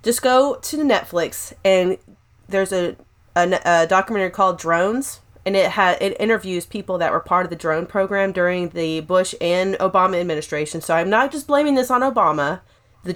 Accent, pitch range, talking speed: American, 175-225 Hz, 185 wpm